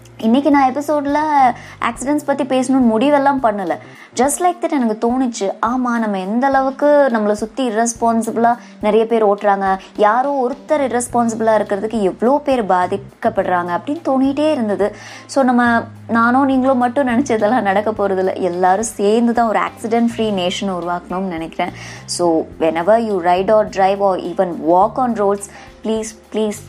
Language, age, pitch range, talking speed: Tamil, 20-39, 185-250 Hz, 145 wpm